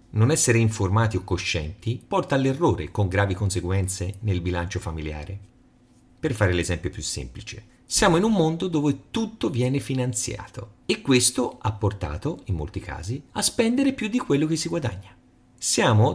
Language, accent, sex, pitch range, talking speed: Italian, native, male, 100-135 Hz, 155 wpm